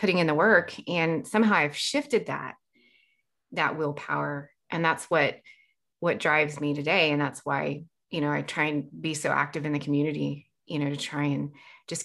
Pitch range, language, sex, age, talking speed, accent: 150-205 Hz, English, female, 30-49, 190 wpm, American